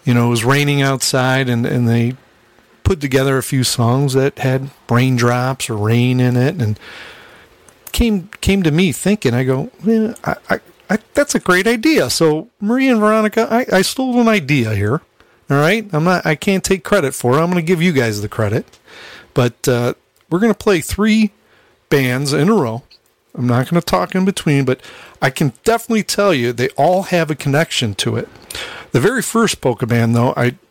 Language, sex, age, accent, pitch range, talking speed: English, male, 40-59, American, 120-170 Hz, 195 wpm